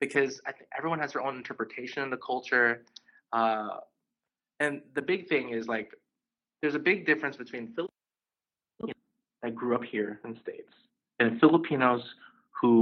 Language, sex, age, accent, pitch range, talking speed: English, male, 20-39, American, 115-150 Hz, 160 wpm